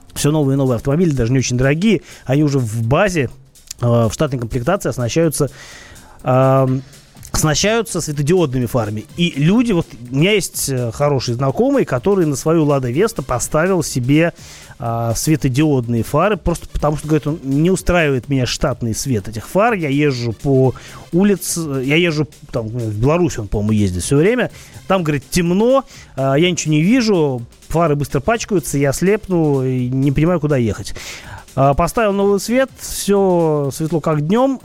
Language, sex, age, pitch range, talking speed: Russian, male, 30-49, 130-170 Hz, 155 wpm